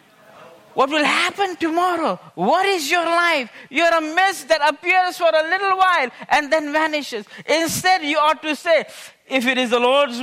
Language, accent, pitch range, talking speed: English, Indian, 225-305 Hz, 180 wpm